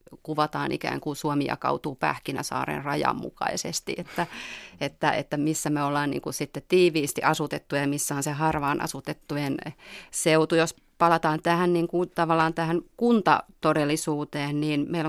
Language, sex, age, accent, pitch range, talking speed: Finnish, female, 30-49, native, 145-165 Hz, 145 wpm